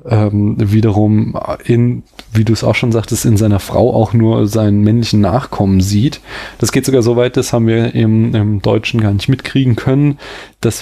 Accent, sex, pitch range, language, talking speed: German, male, 105-120 Hz, German, 185 wpm